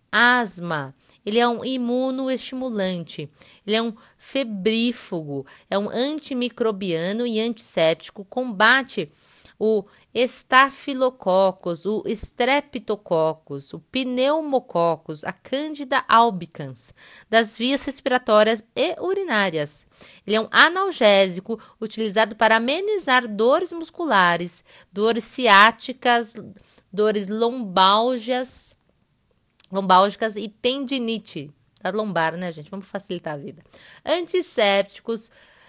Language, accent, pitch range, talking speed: Portuguese, Brazilian, 195-245 Hz, 90 wpm